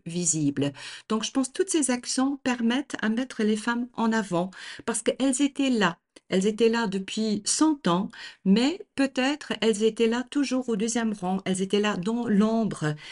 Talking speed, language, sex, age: 180 wpm, French, female, 50-69